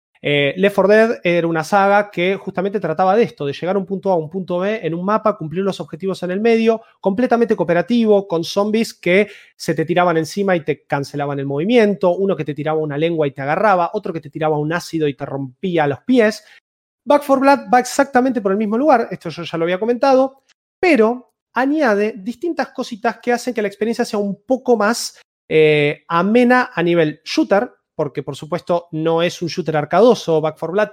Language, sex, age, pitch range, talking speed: Spanish, male, 30-49, 160-215 Hz, 210 wpm